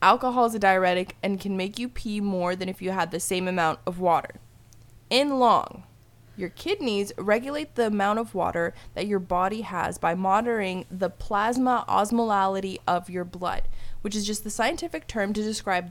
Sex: female